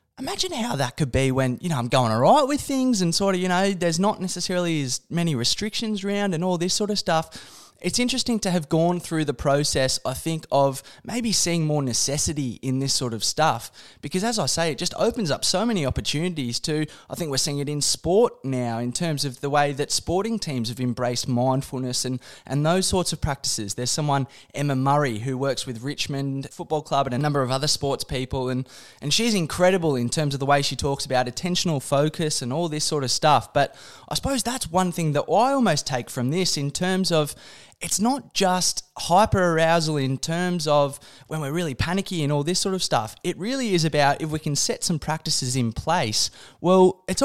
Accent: Australian